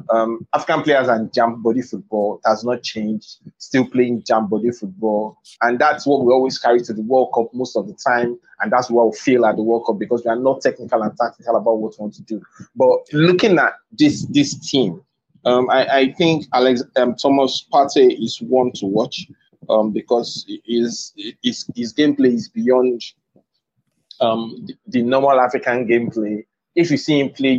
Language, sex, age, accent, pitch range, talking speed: English, male, 30-49, Nigerian, 110-135 Hz, 190 wpm